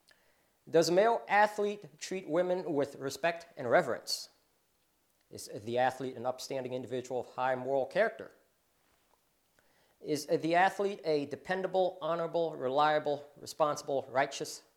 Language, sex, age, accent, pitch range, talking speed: English, male, 40-59, American, 130-175 Hz, 120 wpm